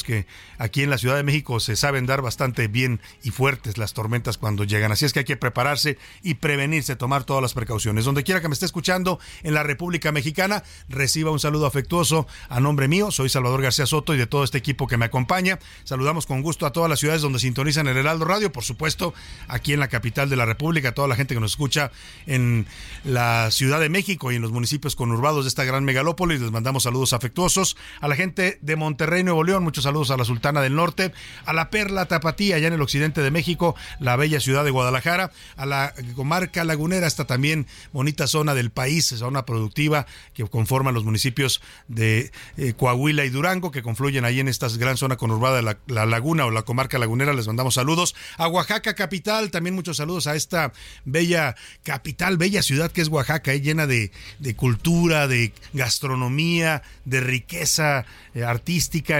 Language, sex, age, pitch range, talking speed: Spanish, male, 50-69, 125-160 Hz, 205 wpm